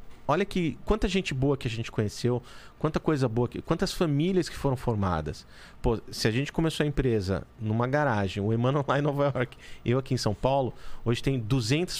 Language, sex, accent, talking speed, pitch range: Portuguese, male, Brazilian, 210 wpm, 120-175 Hz